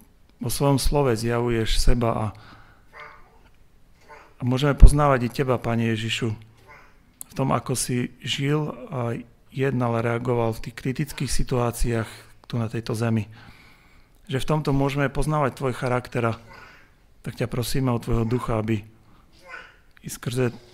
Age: 40-59